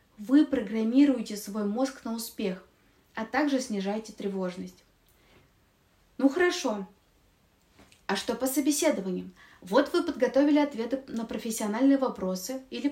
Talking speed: 110 wpm